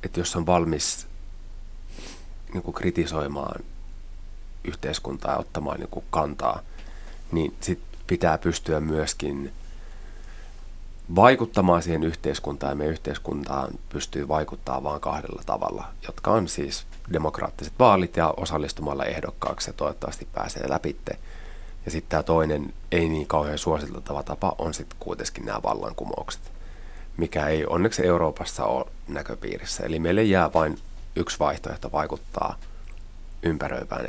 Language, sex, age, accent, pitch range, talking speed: Finnish, male, 30-49, native, 75-85 Hz, 120 wpm